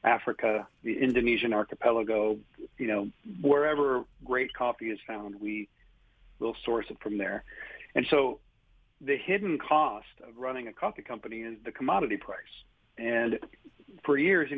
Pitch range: 110-130 Hz